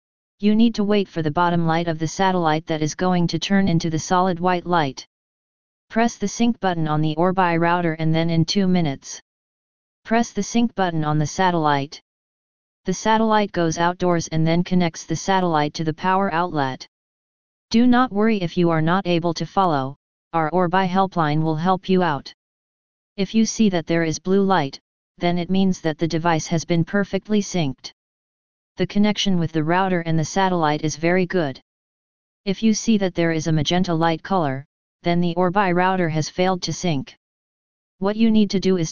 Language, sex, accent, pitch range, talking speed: English, female, American, 160-190 Hz, 190 wpm